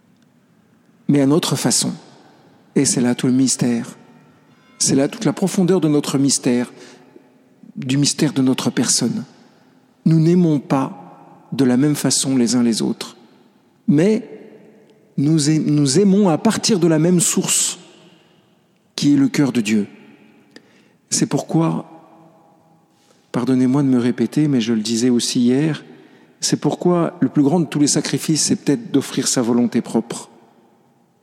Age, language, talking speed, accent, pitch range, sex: 50-69, French, 145 wpm, French, 130-200 Hz, male